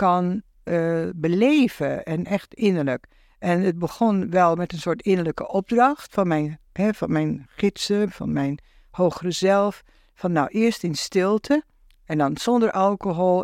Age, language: 60-79, Dutch